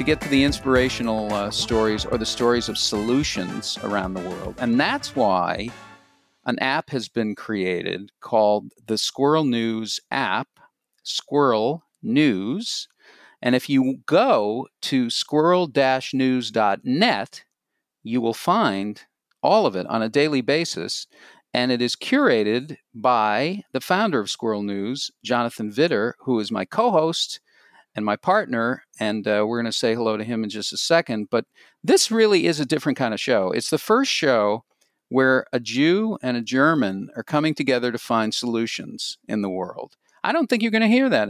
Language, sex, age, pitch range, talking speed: German, male, 50-69, 110-150 Hz, 165 wpm